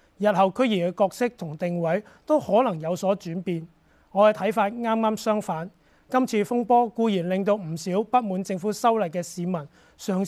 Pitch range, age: 175-220 Hz, 30-49